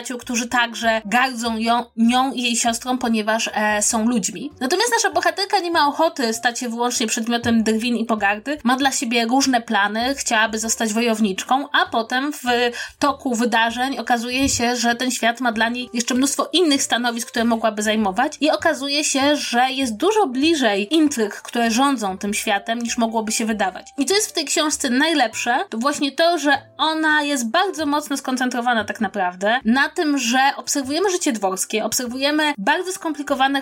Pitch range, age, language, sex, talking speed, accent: 230-290 Hz, 20-39, Polish, female, 170 wpm, native